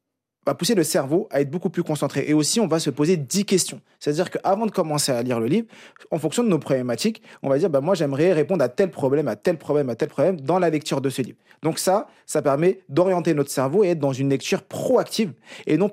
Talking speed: 255 wpm